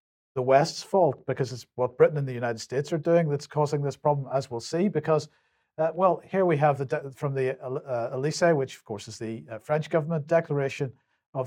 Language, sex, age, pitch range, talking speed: English, male, 50-69, 125-150 Hz, 220 wpm